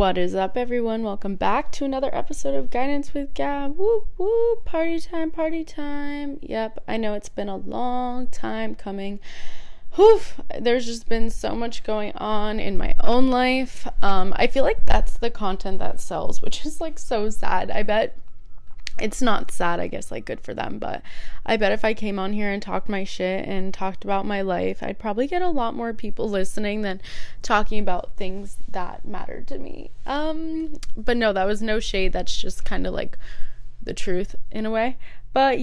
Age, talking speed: 20-39, 195 wpm